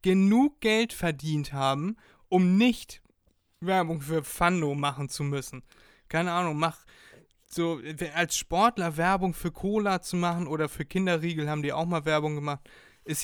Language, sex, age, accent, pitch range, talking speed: German, male, 20-39, German, 145-180 Hz, 150 wpm